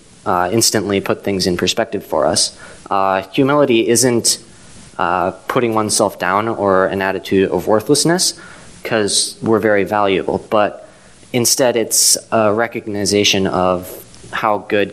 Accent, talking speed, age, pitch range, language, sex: American, 130 wpm, 20-39, 95-115 Hz, English, male